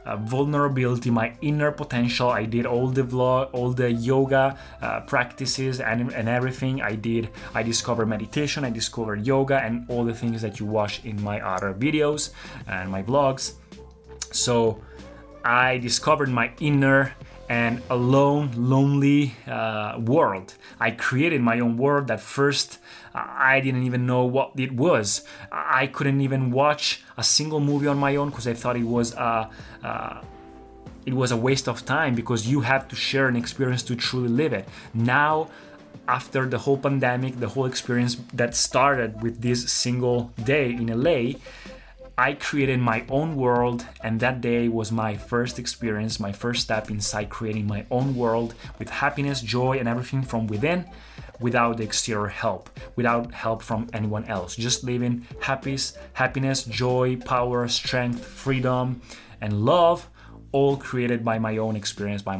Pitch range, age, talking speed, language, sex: 115-135 Hz, 20-39, 160 wpm, Italian, male